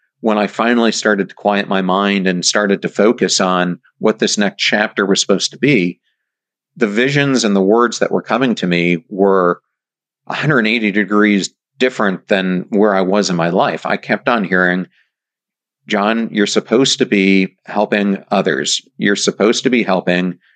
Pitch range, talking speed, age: 95-110 Hz, 170 wpm, 50-69